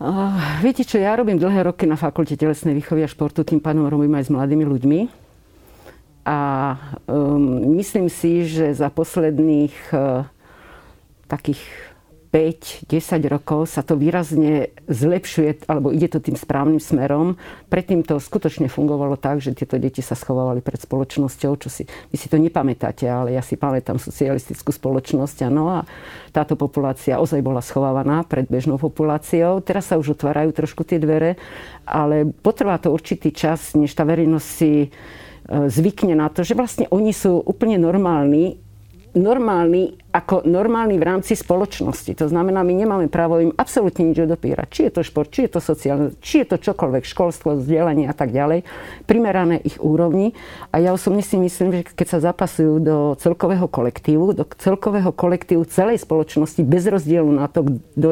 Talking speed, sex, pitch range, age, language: 165 wpm, female, 145-175 Hz, 50-69, Slovak